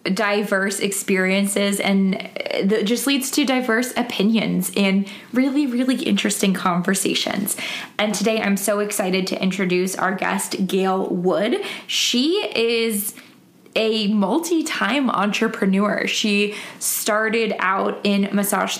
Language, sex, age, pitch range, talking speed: English, female, 20-39, 195-235 Hz, 110 wpm